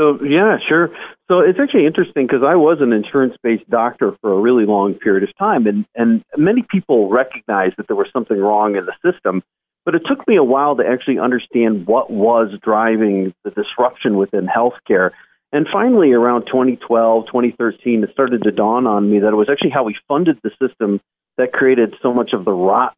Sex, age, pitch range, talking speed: male, 40-59, 110-145 Hz, 200 wpm